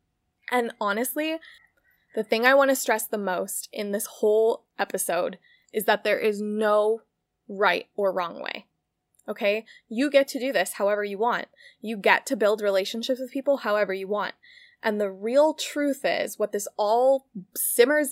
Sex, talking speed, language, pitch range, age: female, 170 wpm, English, 205-260 Hz, 20-39